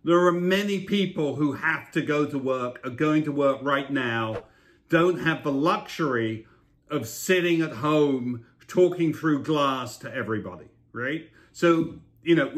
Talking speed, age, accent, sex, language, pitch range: 160 wpm, 50-69, British, male, English, 140-175 Hz